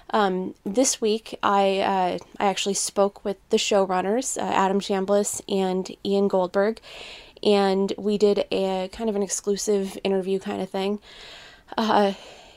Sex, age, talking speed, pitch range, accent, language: female, 20-39, 145 wpm, 190-220 Hz, American, English